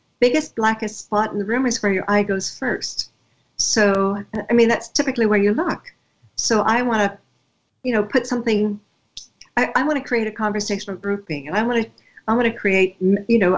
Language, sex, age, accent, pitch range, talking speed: English, female, 50-69, American, 185-235 Hz, 205 wpm